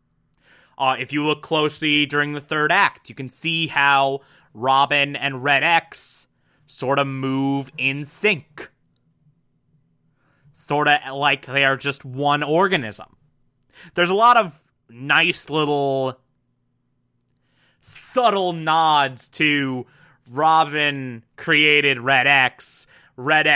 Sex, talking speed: male, 110 wpm